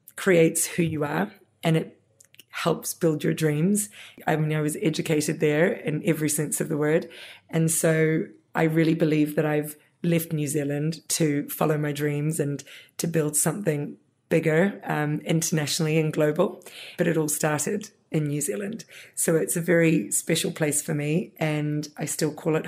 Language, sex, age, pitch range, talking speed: English, female, 20-39, 155-175 Hz, 170 wpm